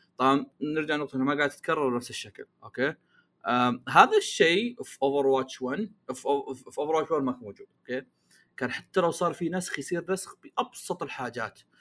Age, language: 30-49, Arabic